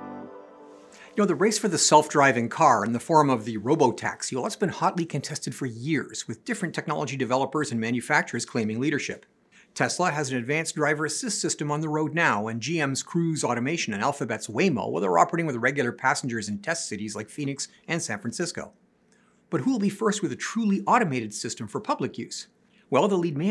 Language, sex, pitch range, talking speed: English, male, 130-175 Hz, 195 wpm